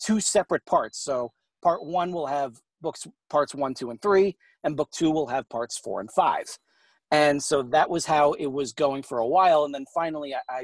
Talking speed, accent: 215 wpm, American